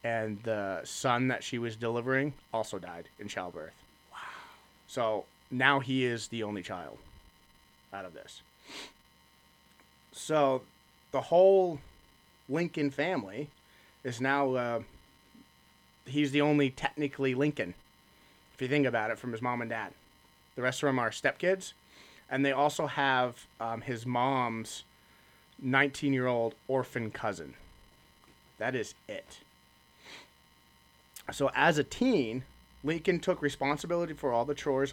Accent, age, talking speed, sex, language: American, 30-49, 130 wpm, male, English